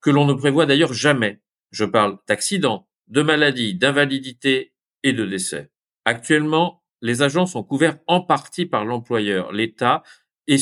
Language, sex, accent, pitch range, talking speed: French, male, French, 120-160 Hz, 145 wpm